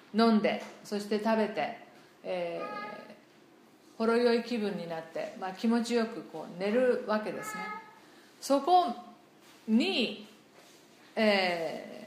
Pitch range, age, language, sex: 210-270 Hz, 40-59, Japanese, female